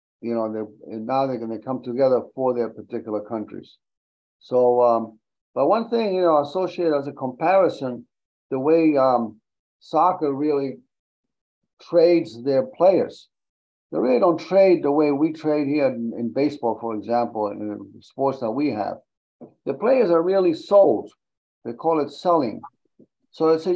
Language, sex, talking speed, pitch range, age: English, male, 165 wpm, 120-170 Hz, 50-69